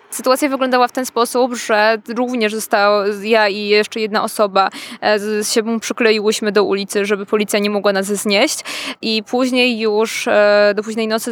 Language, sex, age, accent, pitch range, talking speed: Polish, female, 20-39, native, 205-230 Hz, 160 wpm